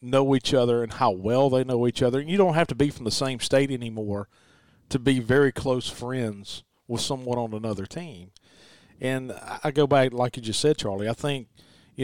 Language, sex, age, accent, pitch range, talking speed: English, male, 40-59, American, 115-145 Hz, 215 wpm